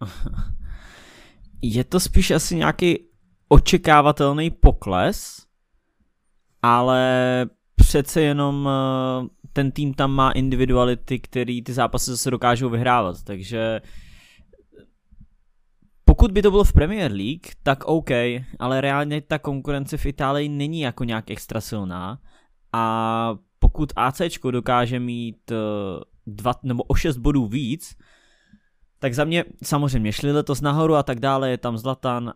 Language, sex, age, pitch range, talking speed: English, male, 20-39, 115-145 Hz, 120 wpm